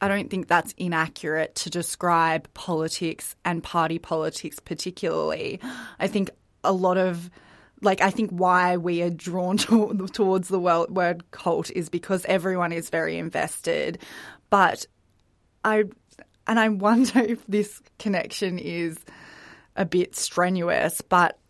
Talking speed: 130 wpm